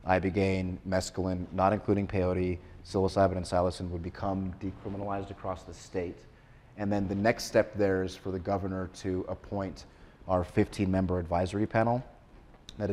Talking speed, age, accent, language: 145 wpm, 30-49, American, English